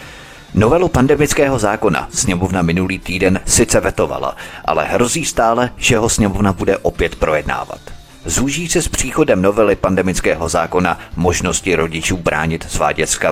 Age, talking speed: 30-49, 130 wpm